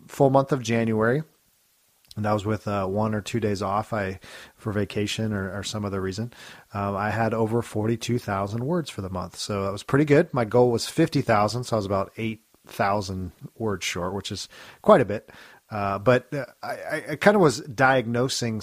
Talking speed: 195 wpm